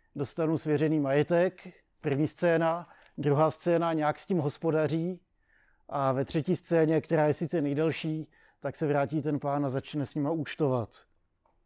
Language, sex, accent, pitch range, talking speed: Czech, male, native, 145-165 Hz, 150 wpm